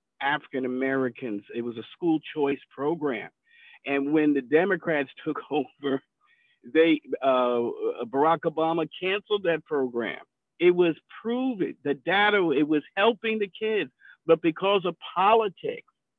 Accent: American